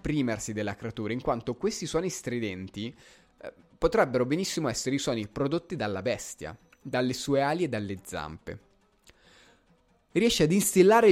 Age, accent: 20-39, native